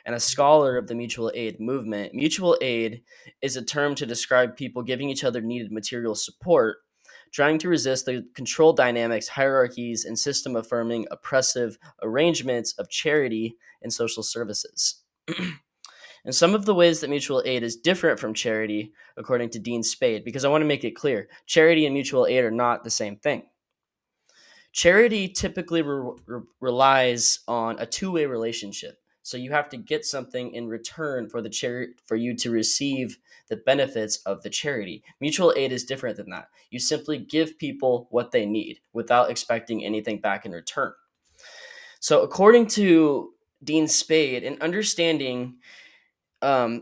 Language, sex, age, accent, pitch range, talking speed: English, male, 10-29, American, 115-155 Hz, 160 wpm